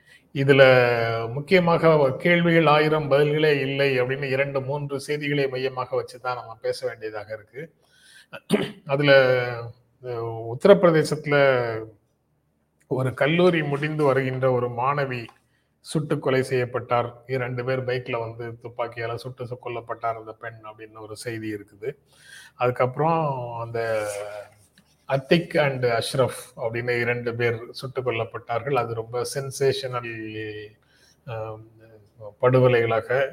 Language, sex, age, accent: Tamil, male, 30-49, native